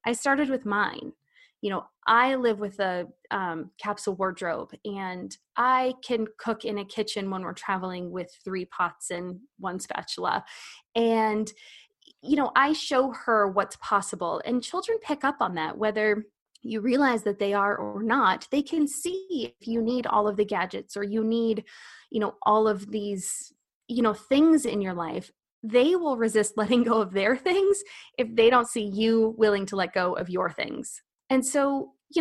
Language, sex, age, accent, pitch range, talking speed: English, female, 20-39, American, 205-270 Hz, 185 wpm